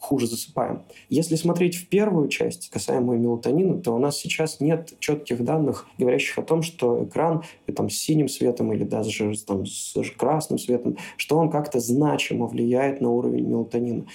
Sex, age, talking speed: male, 20-39, 155 wpm